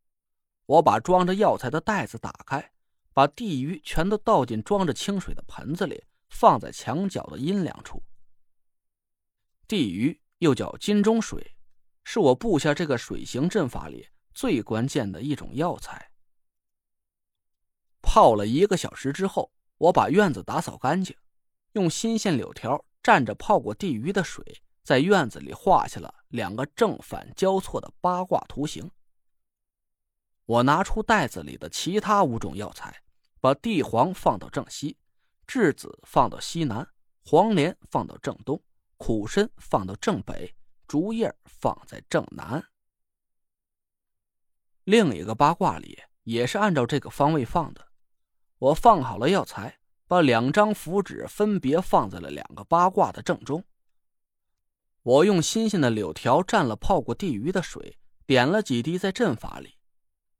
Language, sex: Chinese, male